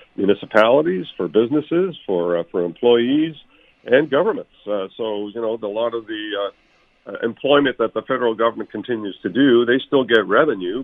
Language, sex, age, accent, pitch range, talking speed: English, male, 50-69, American, 100-115 Hz, 170 wpm